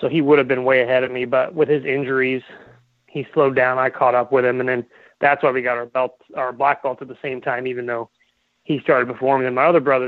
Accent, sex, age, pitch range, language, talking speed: American, male, 30-49, 125-140 Hz, English, 275 wpm